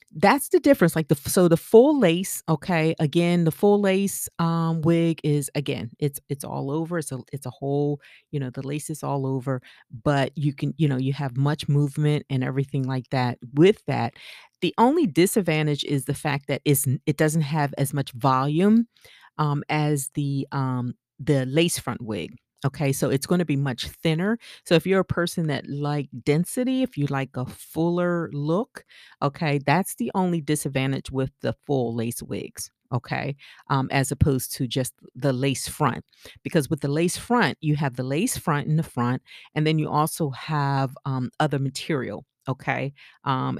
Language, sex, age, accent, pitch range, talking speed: English, female, 40-59, American, 130-160 Hz, 185 wpm